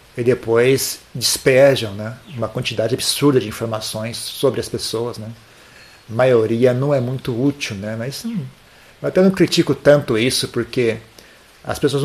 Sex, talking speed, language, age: male, 155 wpm, Portuguese, 40-59